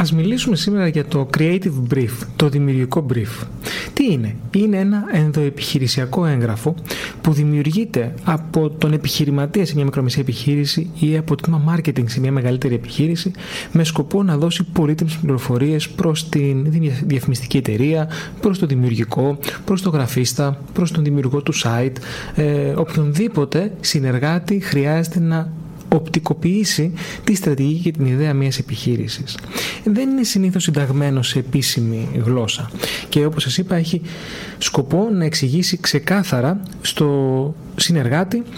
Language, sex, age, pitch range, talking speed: Greek, male, 30-49, 140-180 Hz, 130 wpm